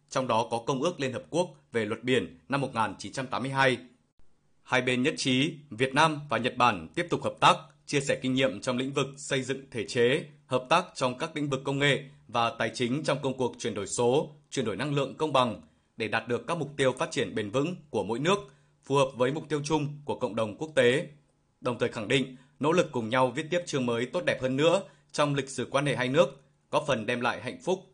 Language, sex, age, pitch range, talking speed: Vietnamese, male, 20-39, 125-145 Hz, 245 wpm